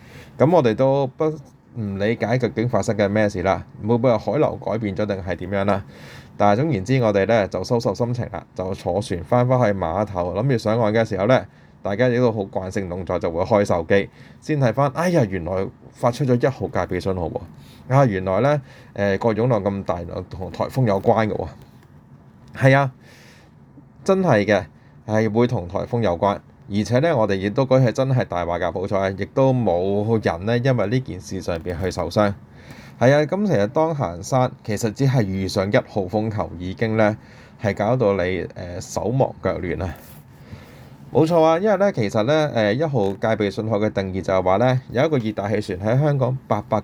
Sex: male